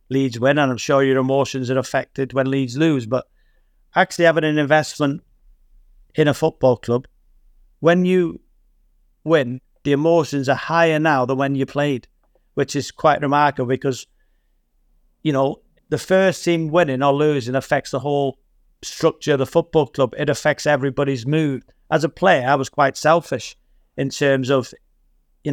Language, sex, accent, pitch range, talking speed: English, male, British, 130-155 Hz, 160 wpm